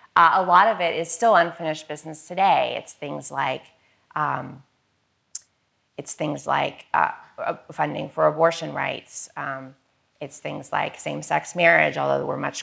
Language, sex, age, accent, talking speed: English, female, 30-49, American, 145 wpm